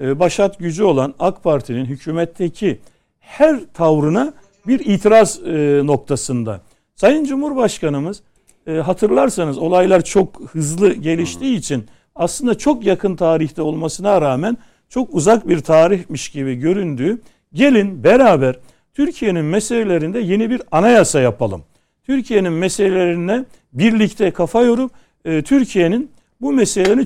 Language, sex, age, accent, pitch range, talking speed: Turkish, male, 60-79, native, 155-225 Hz, 105 wpm